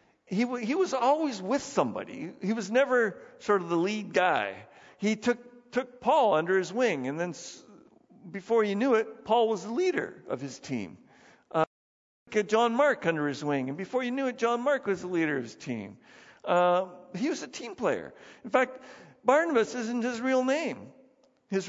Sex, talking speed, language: male, 195 wpm, English